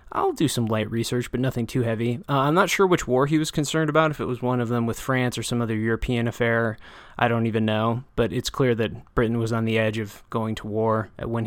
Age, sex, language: 20-39, male, English